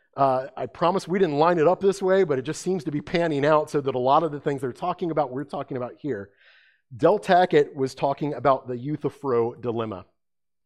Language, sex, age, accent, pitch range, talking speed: English, male, 40-59, American, 125-170 Hz, 230 wpm